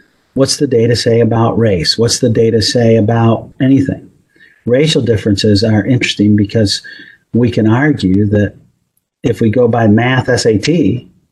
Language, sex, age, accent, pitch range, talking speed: English, male, 50-69, American, 105-130 Hz, 145 wpm